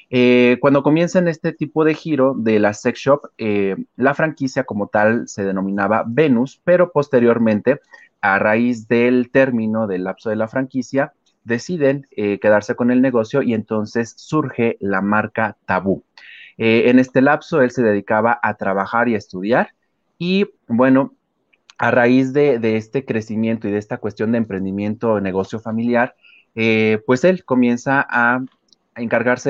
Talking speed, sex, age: 160 wpm, male, 30-49